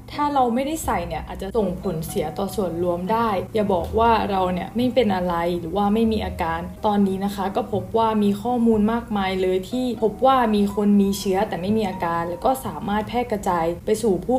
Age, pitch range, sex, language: 20-39, 185-225 Hz, female, Thai